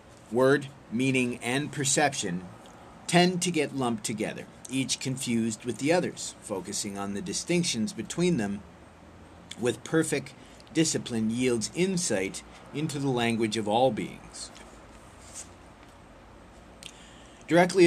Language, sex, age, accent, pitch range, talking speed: English, male, 50-69, American, 110-135 Hz, 105 wpm